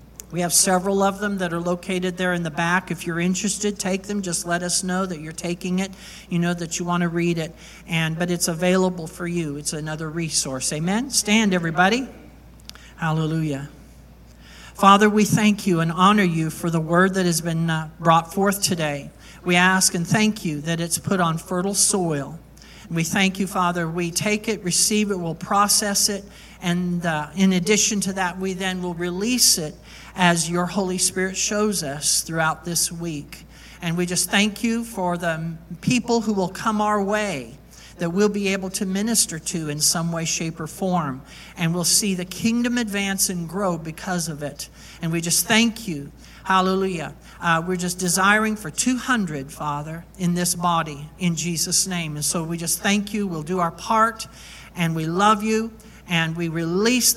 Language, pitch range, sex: English, 165-200 Hz, male